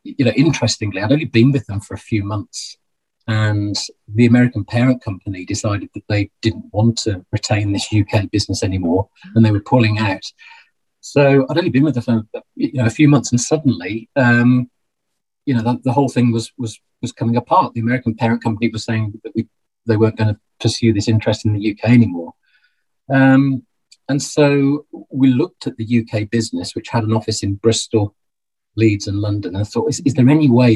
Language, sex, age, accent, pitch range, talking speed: English, male, 40-59, British, 105-125 Hz, 195 wpm